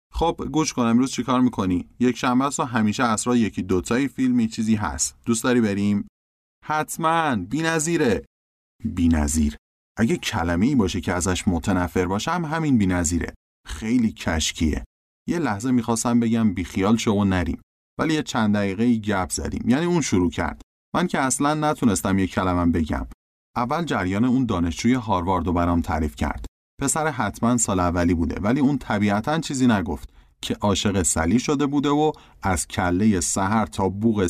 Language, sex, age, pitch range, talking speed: Persian, male, 30-49, 85-125 Hz, 155 wpm